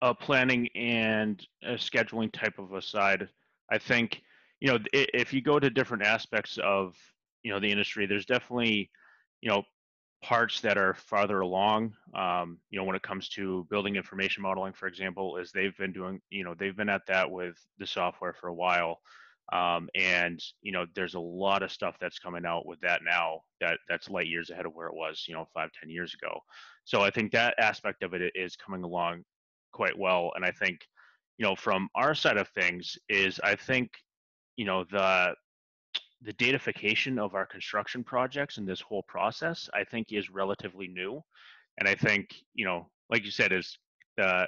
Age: 30-49